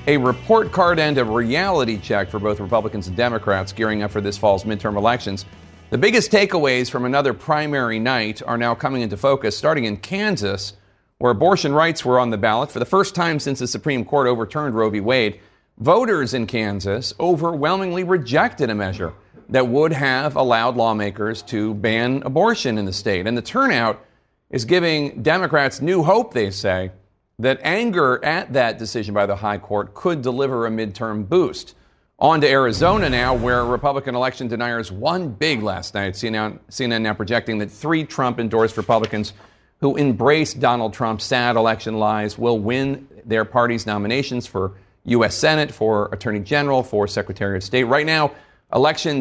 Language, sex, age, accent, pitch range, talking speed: English, male, 40-59, American, 105-140 Hz, 170 wpm